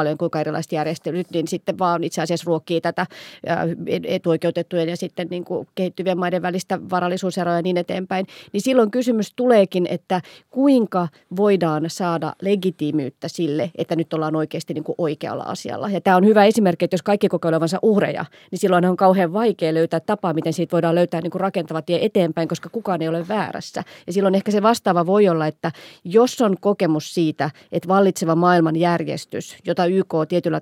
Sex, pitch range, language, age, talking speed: female, 165-190 Hz, Finnish, 30-49, 175 wpm